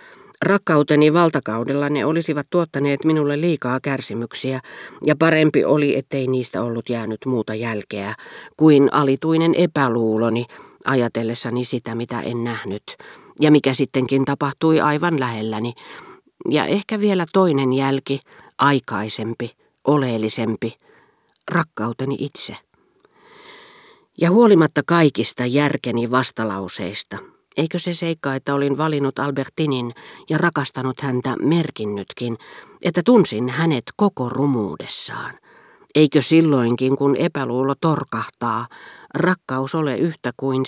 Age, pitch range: 40-59, 120-160 Hz